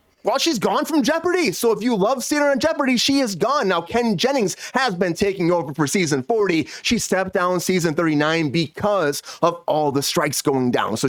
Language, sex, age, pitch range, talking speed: English, male, 30-49, 155-230 Hz, 210 wpm